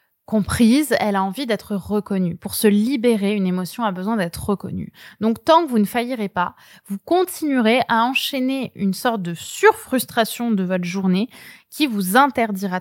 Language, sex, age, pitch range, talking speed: French, female, 20-39, 190-230 Hz, 170 wpm